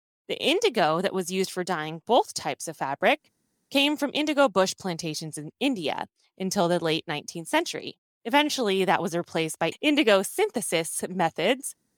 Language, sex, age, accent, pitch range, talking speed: English, female, 20-39, American, 175-260 Hz, 155 wpm